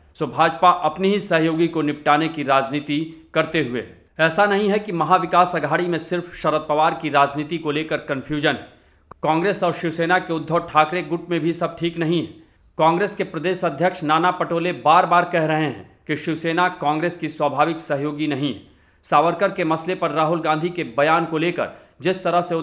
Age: 40-59